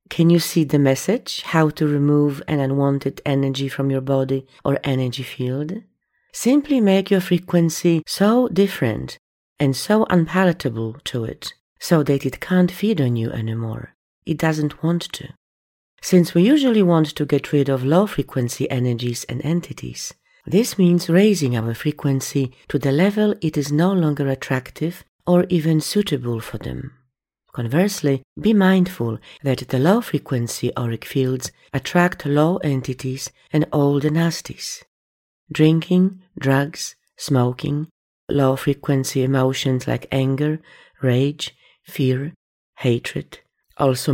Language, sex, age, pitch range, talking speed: English, female, 40-59, 130-170 Hz, 130 wpm